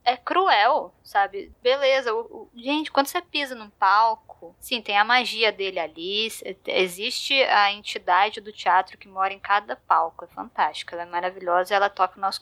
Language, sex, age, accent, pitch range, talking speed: Portuguese, female, 10-29, Brazilian, 200-255 Hz, 175 wpm